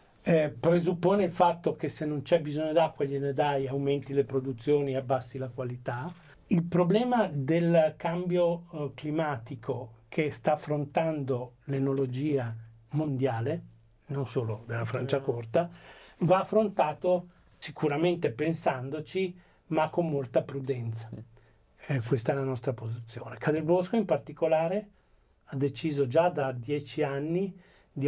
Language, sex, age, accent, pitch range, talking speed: Italian, male, 40-59, native, 130-160 Hz, 130 wpm